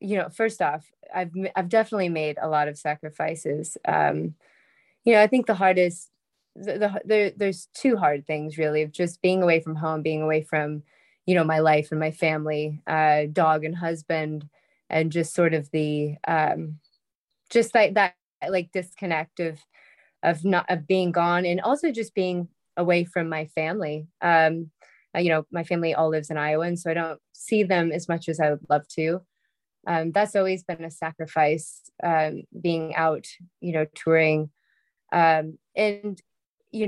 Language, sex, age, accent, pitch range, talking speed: English, female, 20-39, American, 155-190 Hz, 180 wpm